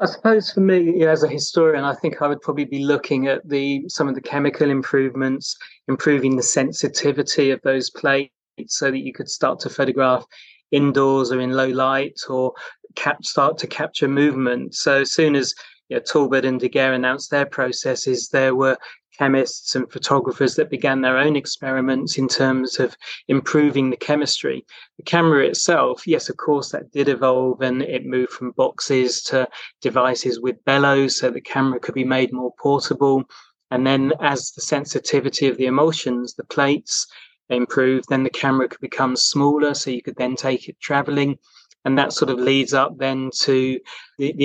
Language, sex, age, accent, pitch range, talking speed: English, male, 30-49, British, 130-145 Hz, 180 wpm